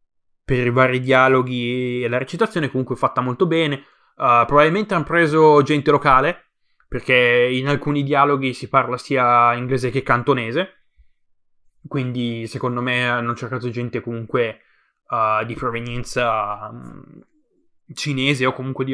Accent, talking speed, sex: native, 135 wpm, male